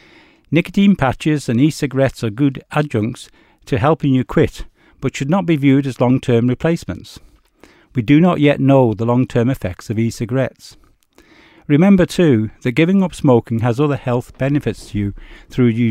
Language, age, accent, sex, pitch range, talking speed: English, 60-79, British, male, 115-145 Hz, 160 wpm